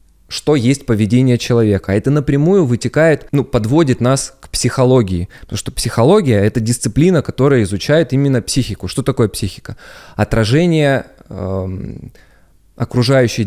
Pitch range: 105-140 Hz